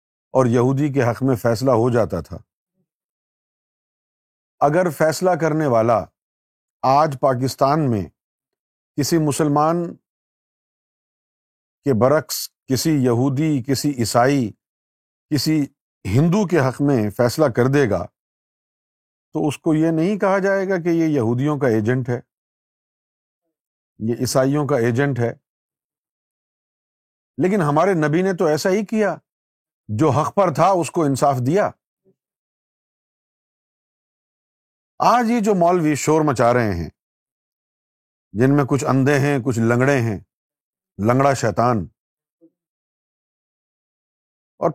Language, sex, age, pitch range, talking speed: Urdu, male, 50-69, 120-165 Hz, 115 wpm